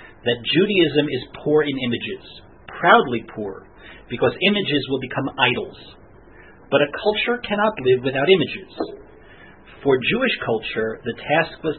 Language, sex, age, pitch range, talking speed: English, male, 40-59, 125-150 Hz, 130 wpm